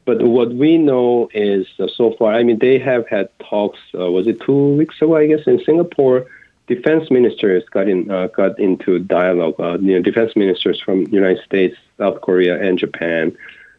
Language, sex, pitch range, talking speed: English, male, 85-125 Hz, 190 wpm